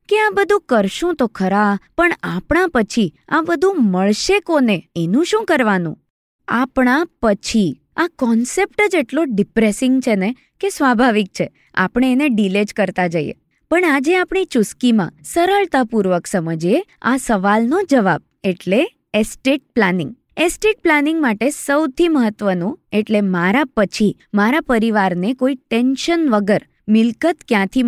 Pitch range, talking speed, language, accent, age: 205-300 Hz, 130 wpm, Gujarati, native, 20-39